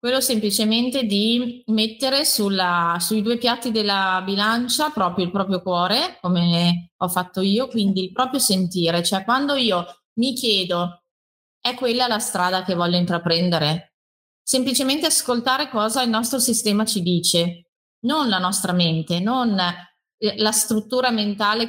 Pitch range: 180-230 Hz